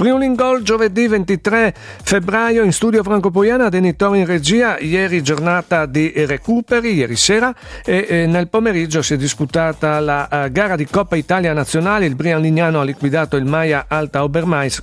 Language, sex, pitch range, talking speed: Italian, male, 155-190 Hz, 165 wpm